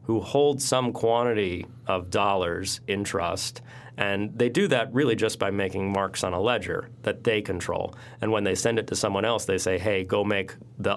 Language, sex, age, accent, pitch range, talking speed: English, male, 30-49, American, 95-115 Hz, 200 wpm